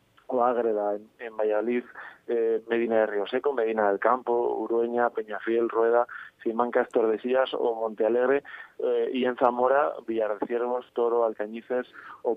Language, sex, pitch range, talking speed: Spanish, male, 115-130 Hz, 130 wpm